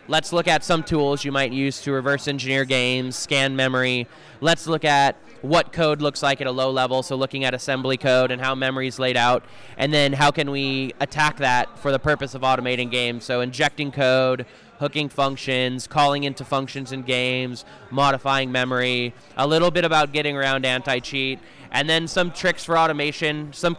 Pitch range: 130-150 Hz